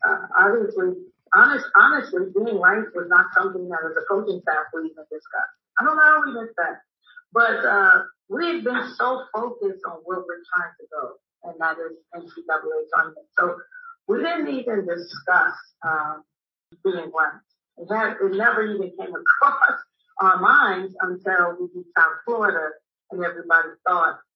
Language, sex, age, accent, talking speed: English, female, 40-59, American, 165 wpm